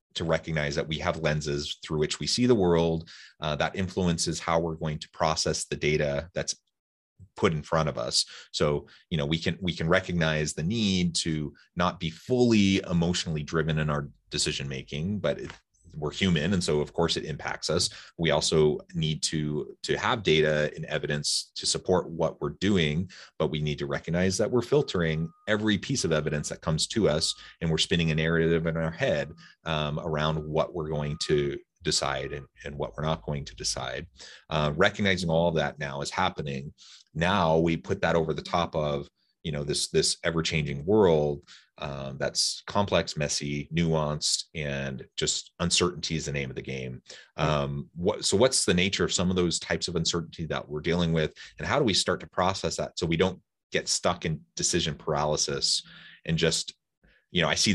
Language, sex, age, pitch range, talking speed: English, male, 30-49, 75-85 Hz, 190 wpm